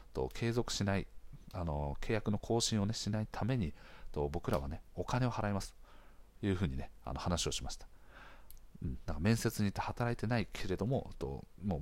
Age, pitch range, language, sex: 40-59, 80-105 Hz, Japanese, male